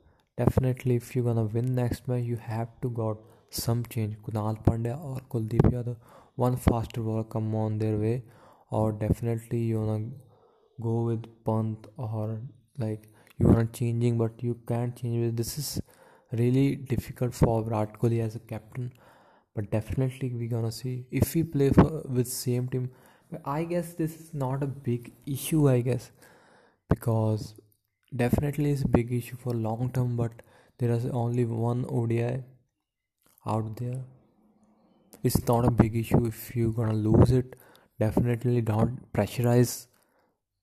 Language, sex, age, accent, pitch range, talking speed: English, male, 20-39, Indian, 110-125 Hz, 160 wpm